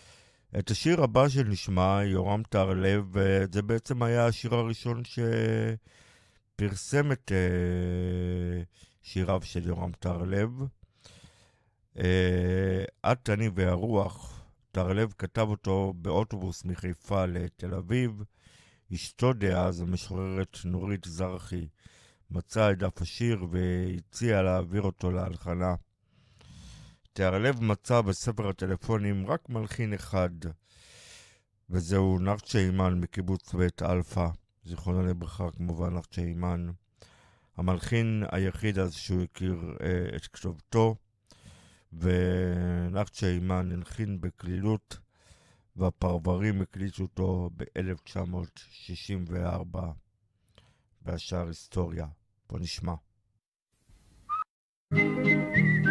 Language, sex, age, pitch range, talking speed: Hebrew, male, 50-69, 90-105 Hz, 85 wpm